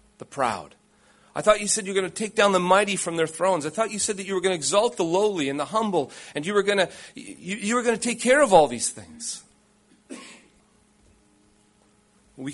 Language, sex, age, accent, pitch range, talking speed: English, male, 40-59, American, 150-210 Hz, 215 wpm